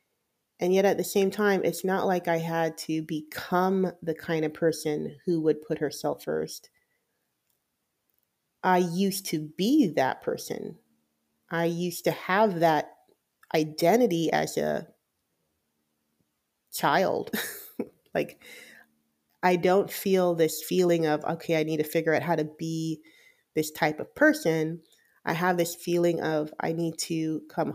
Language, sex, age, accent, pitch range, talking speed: English, female, 30-49, American, 160-200 Hz, 145 wpm